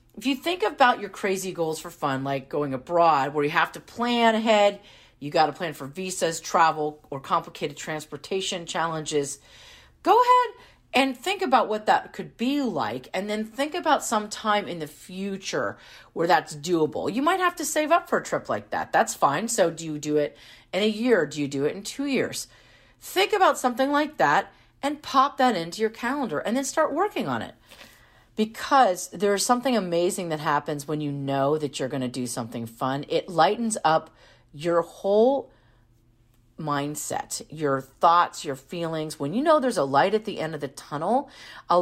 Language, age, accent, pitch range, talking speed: English, 40-59, American, 145-235 Hz, 195 wpm